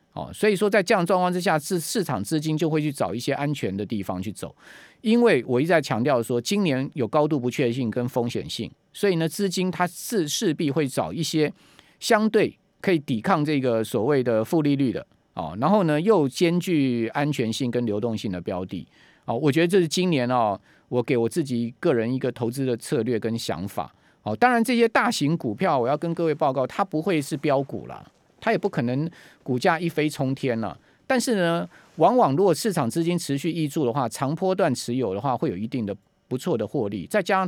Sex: male